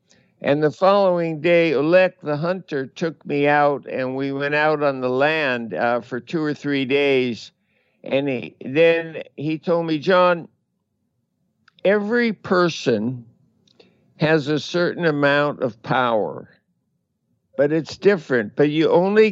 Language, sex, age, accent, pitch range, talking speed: English, male, 60-79, American, 140-175 Hz, 135 wpm